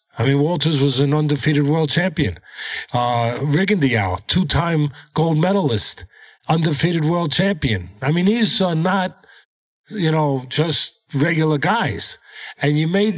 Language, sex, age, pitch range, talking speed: English, male, 50-69, 140-175 Hz, 130 wpm